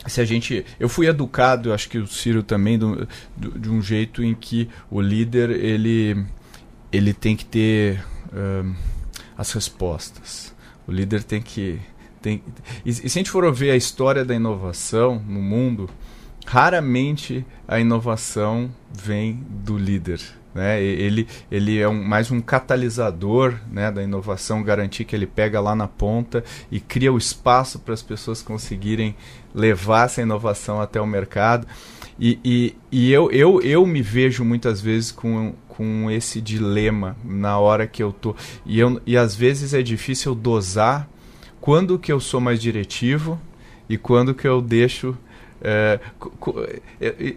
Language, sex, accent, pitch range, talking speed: Portuguese, male, Brazilian, 105-125 Hz, 155 wpm